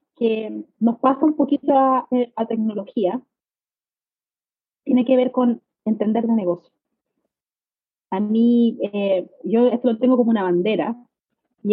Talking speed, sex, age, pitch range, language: 135 wpm, female, 30-49, 215-260 Hz, English